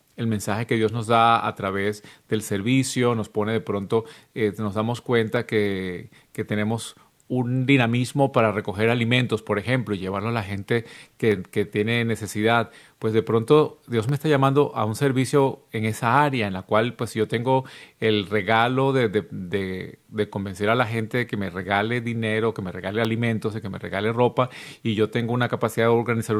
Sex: male